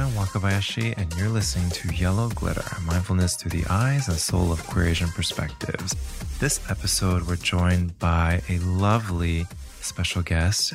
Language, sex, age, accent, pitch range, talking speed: English, male, 20-39, American, 85-100 Hz, 145 wpm